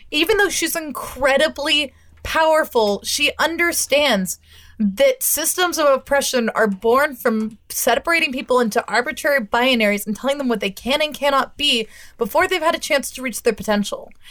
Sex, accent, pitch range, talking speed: female, American, 215-280 Hz, 155 wpm